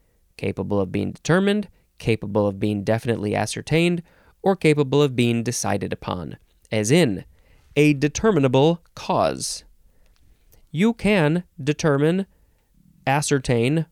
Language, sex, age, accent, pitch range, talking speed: English, male, 20-39, American, 105-155 Hz, 105 wpm